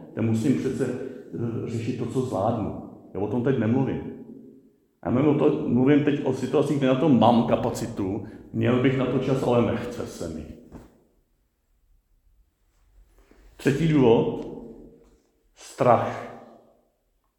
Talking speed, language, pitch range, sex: 115 wpm, Czech, 115-140 Hz, male